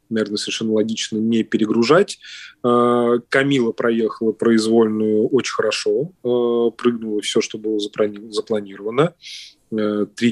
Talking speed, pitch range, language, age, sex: 95 wpm, 110-130 Hz, Russian, 20-39, male